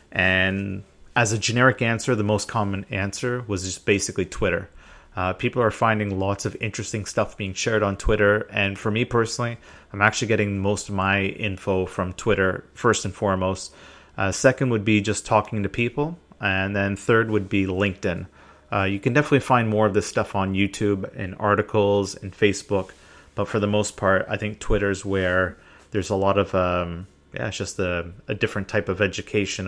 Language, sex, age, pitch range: English, male, 30-49, 95-110 Hz